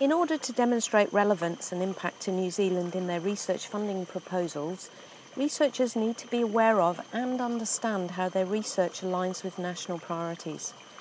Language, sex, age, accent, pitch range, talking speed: English, female, 50-69, British, 185-240 Hz, 165 wpm